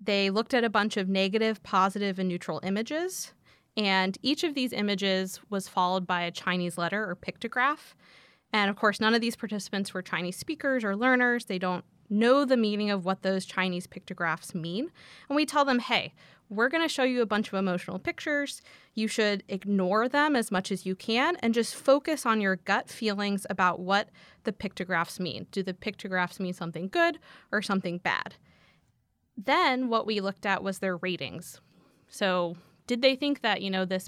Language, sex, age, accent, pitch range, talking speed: English, female, 20-39, American, 185-230 Hz, 185 wpm